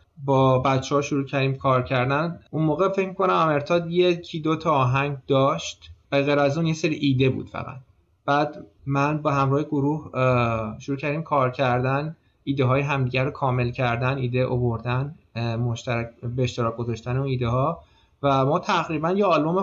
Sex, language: male, Persian